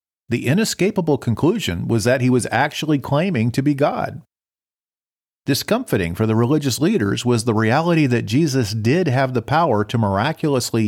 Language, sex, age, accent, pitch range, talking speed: English, male, 50-69, American, 110-155 Hz, 155 wpm